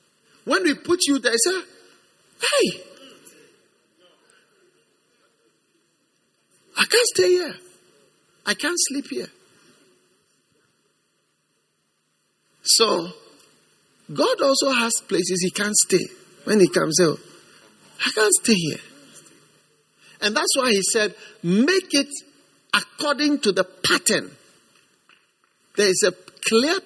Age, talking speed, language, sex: 50-69, 105 wpm, English, male